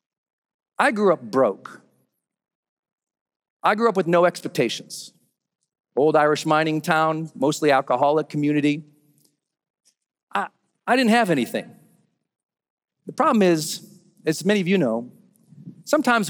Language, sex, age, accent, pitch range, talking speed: English, male, 40-59, American, 145-190 Hz, 115 wpm